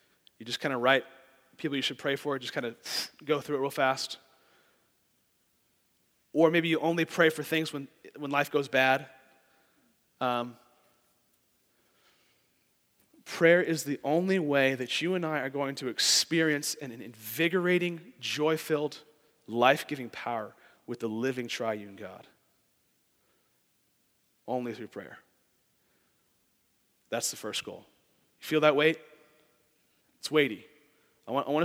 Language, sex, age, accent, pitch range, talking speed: English, male, 30-49, American, 130-165 Hz, 140 wpm